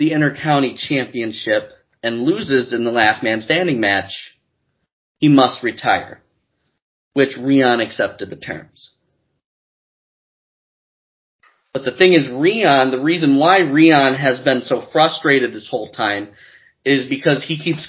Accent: American